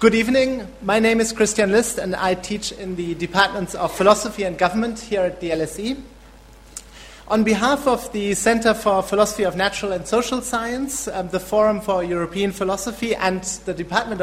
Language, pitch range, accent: English, 165-210 Hz, German